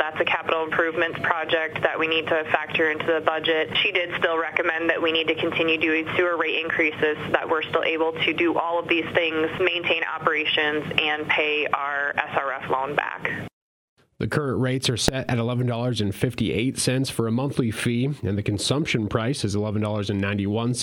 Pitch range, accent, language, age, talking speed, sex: 105-135 Hz, American, English, 30-49, 175 wpm, male